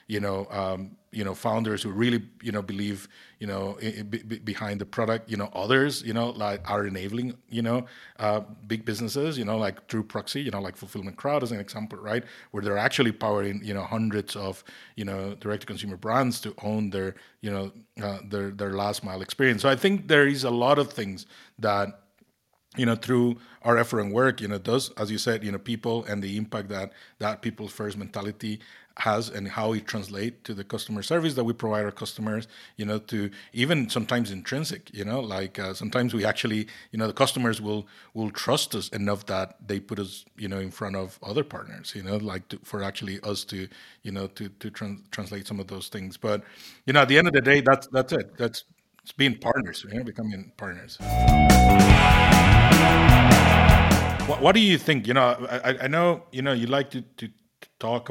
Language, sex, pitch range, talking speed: English, male, 100-120 Hz, 205 wpm